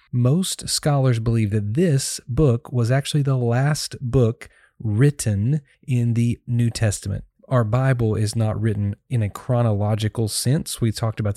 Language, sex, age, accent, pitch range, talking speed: English, male, 30-49, American, 105-130 Hz, 150 wpm